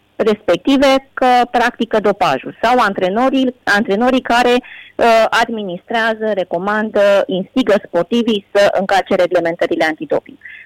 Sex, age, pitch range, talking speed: female, 20-39, 185-235 Hz, 95 wpm